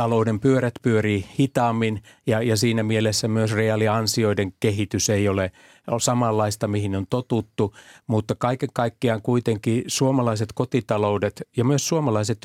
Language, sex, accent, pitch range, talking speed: Finnish, male, native, 105-120 Hz, 125 wpm